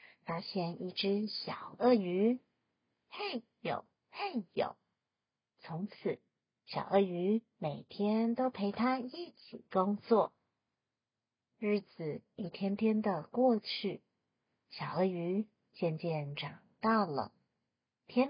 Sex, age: female, 40-59